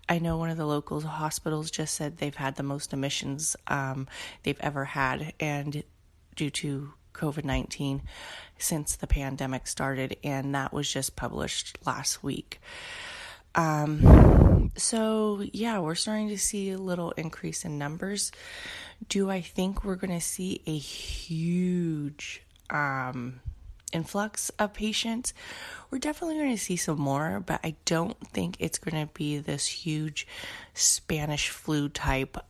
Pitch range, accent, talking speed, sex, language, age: 140-185 Hz, American, 145 wpm, female, English, 20-39